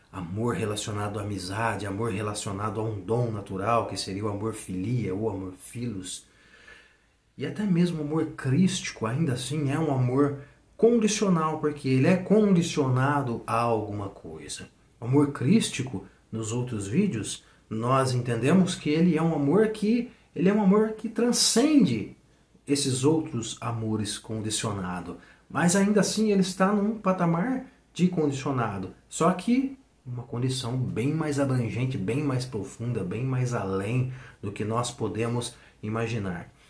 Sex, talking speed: male, 145 wpm